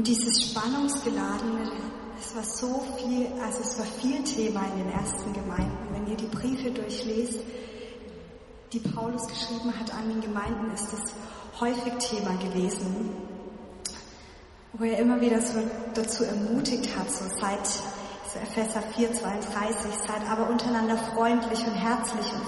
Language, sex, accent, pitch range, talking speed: German, female, German, 205-235 Hz, 145 wpm